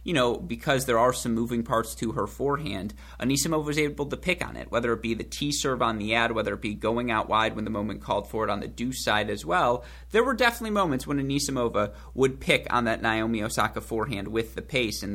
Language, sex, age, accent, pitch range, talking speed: English, male, 30-49, American, 105-125 Hz, 245 wpm